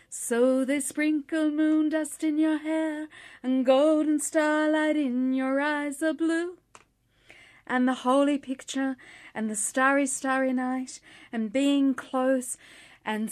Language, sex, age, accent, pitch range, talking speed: English, female, 30-49, Australian, 215-290 Hz, 130 wpm